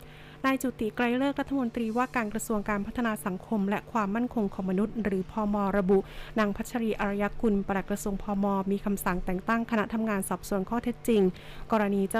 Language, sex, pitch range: Thai, female, 195-225 Hz